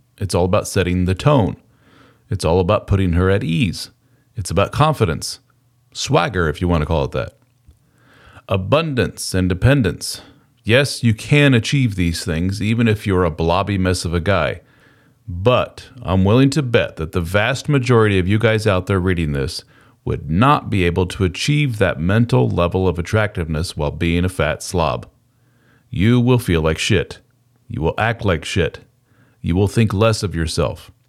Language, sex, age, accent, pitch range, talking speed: English, male, 40-59, American, 90-125 Hz, 175 wpm